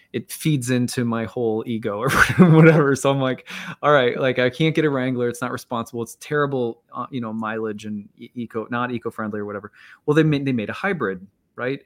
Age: 20-39